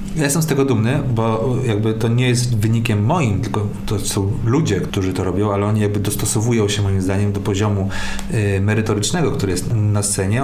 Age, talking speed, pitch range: 40-59, 190 wpm, 105-125 Hz